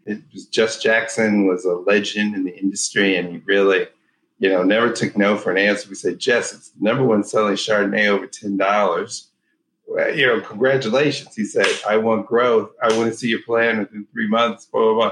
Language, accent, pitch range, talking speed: English, American, 95-110 Hz, 200 wpm